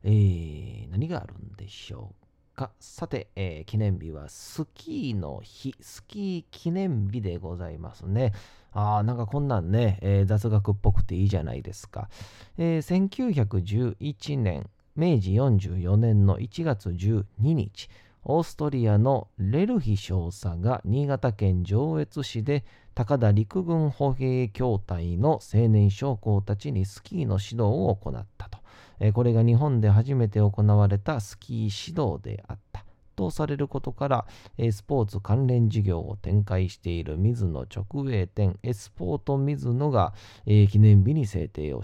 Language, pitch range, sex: Japanese, 100-130 Hz, male